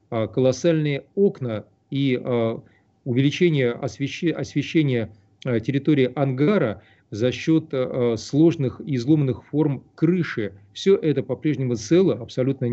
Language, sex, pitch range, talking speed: Russian, male, 120-160 Hz, 90 wpm